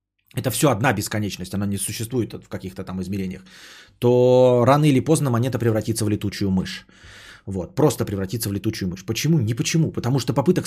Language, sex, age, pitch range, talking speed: Bulgarian, male, 20-39, 105-150 Hz, 180 wpm